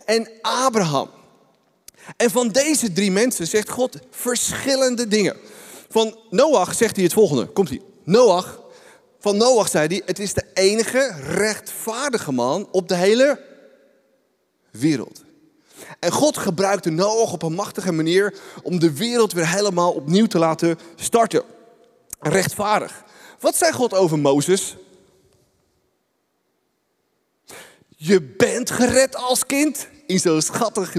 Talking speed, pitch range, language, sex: 125 wpm, 185-245 Hz, Dutch, male